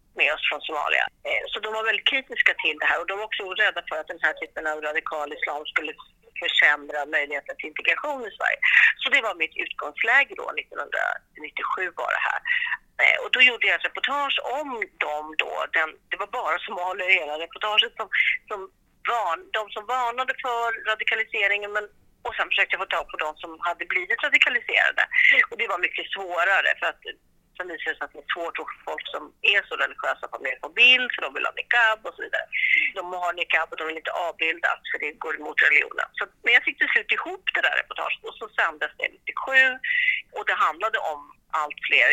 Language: Swedish